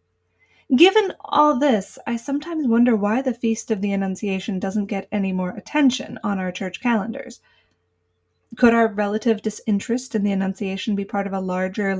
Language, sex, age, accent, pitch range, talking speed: English, female, 20-39, American, 190-230 Hz, 165 wpm